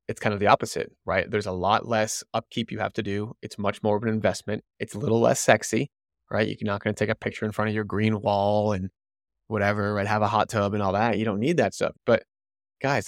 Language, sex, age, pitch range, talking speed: English, male, 20-39, 100-115 Hz, 260 wpm